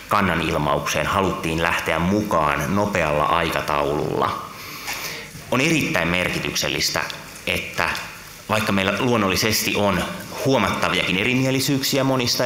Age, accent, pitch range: 30-49, native, 80-100 Hz